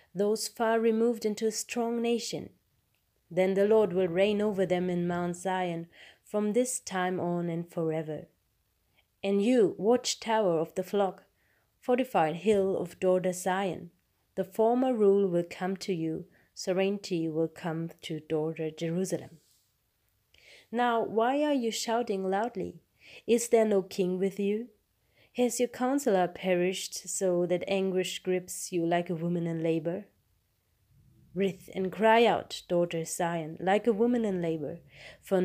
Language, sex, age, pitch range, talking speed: English, female, 30-49, 165-215 Hz, 145 wpm